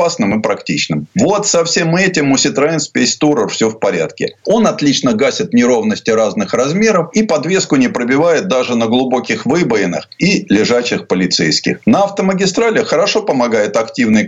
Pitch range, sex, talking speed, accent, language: 150-220 Hz, male, 145 wpm, native, Russian